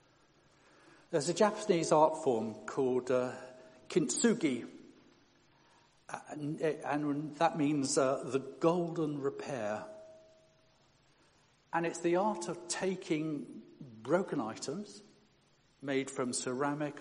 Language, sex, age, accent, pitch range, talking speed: English, male, 60-79, British, 125-175 Hz, 95 wpm